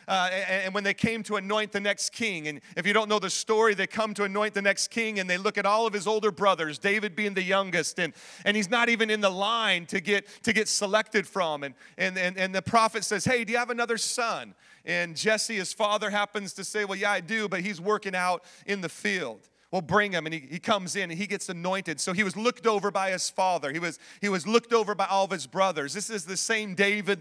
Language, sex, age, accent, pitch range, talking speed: English, male, 40-59, American, 190-215 Hz, 260 wpm